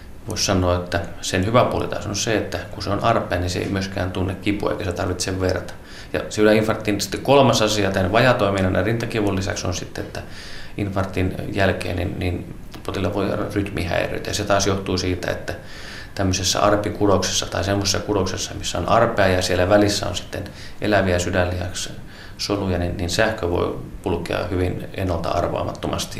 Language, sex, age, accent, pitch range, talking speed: Finnish, male, 30-49, native, 90-105 Hz, 165 wpm